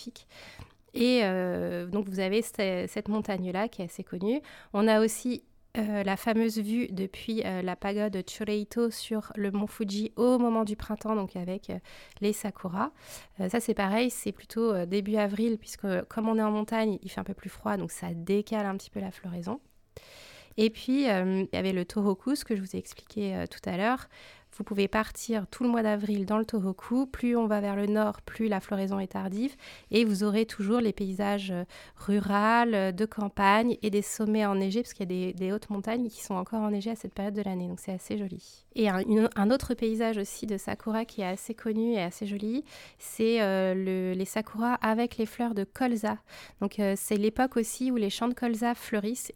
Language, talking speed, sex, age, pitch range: French, 215 wpm, female, 20-39, 195-225 Hz